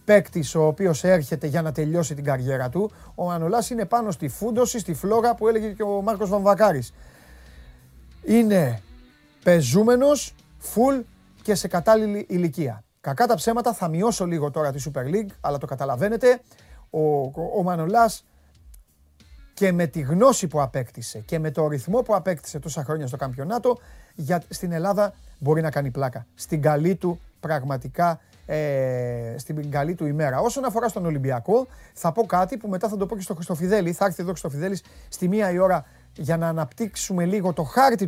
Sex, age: male, 30-49